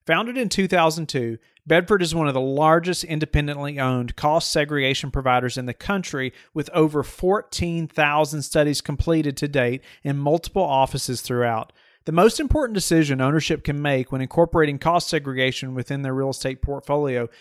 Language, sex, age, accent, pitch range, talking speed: English, male, 40-59, American, 130-160 Hz, 150 wpm